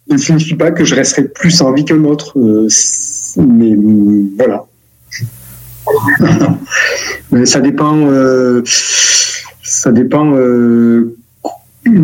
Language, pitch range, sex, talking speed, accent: French, 115-160 Hz, male, 115 wpm, French